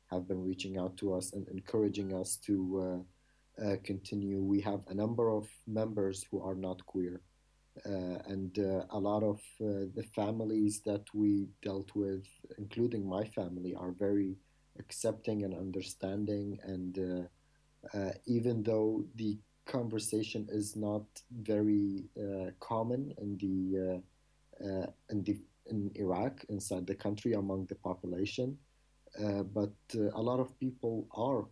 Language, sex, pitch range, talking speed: English, male, 95-105 Hz, 145 wpm